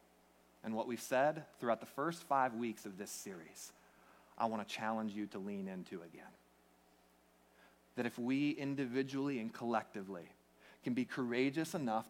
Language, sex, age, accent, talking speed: English, male, 30-49, American, 155 wpm